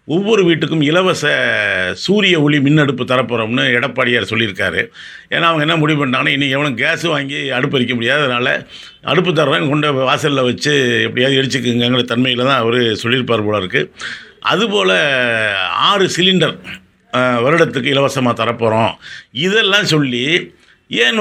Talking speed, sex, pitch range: 115 wpm, male, 125-165 Hz